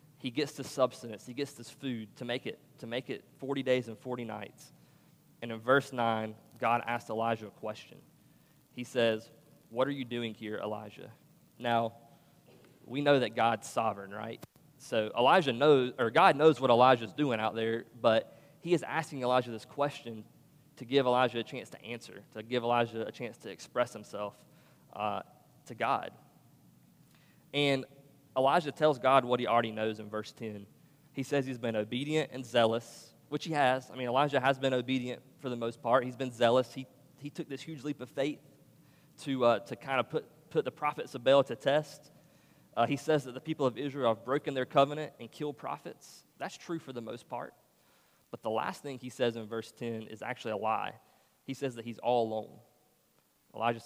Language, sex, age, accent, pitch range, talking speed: English, male, 20-39, American, 115-145 Hz, 195 wpm